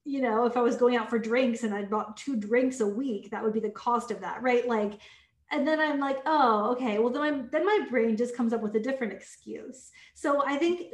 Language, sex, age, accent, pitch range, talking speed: English, female, 20-39, American, 220-290 Hz, 260 wpm